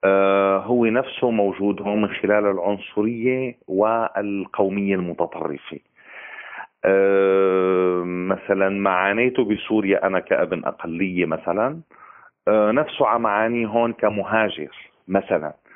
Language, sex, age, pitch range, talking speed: Arabic, male, 40-59, 100-130 Hz, 90 wpm